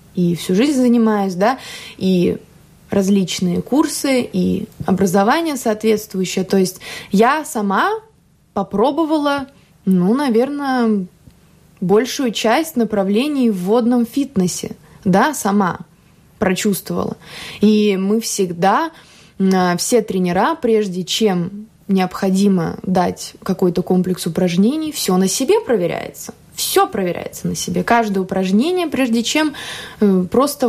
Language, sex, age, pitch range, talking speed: Russian, female, 20-39, 185-235 Hz, 100 wpm